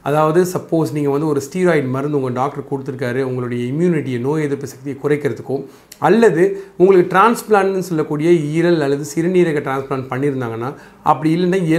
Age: 40-59